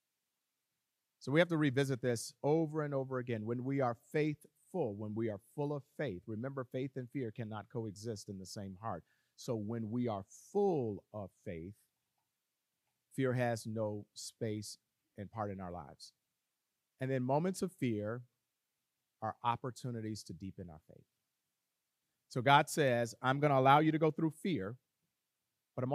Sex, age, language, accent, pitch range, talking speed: male, 40-59, English, American, 105-135 Hz, 165 wpm